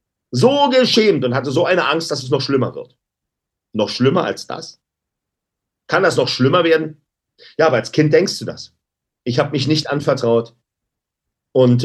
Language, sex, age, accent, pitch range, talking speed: German, male, 50-69, German, 125-165 Hz, 170 wpm